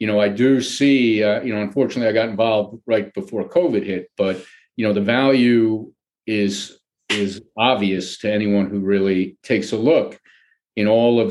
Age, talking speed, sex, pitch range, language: 50-69, 180 wpm, male, 100-125 Hz, English